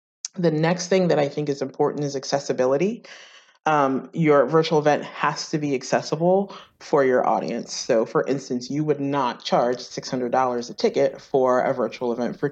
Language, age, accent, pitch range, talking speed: English, 30-49, American, 130-160 Hz, 175 wpm